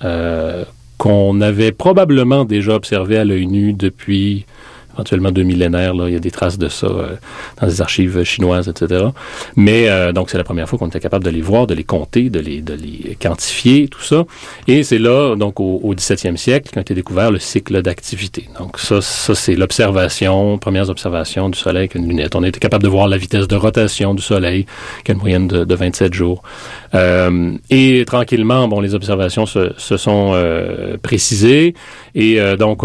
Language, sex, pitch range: French, male, 95-115 Hz